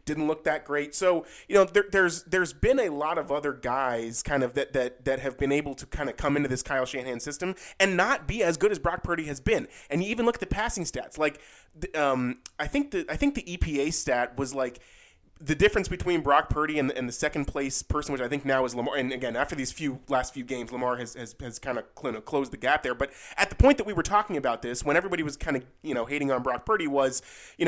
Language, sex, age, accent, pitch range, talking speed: English, male, 20-39, American, 130-175 Hz, 265 wpm